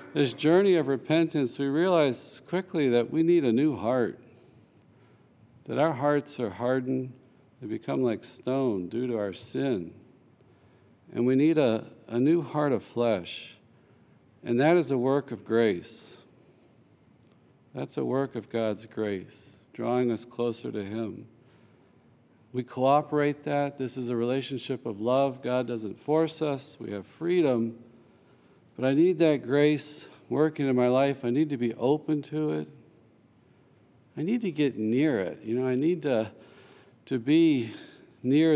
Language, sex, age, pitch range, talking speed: English, male, 50-69, 120-150 Hz, 155 wpm